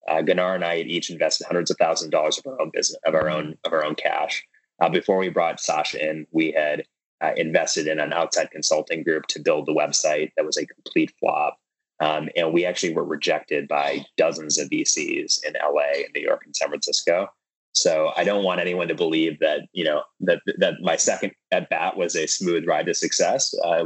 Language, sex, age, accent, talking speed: English, male, 20-39, American, 225 wpm